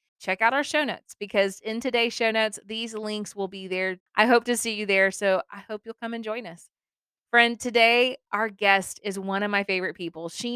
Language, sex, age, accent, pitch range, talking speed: English, female, 20-39, American, 190-230 Hz, 225 wpm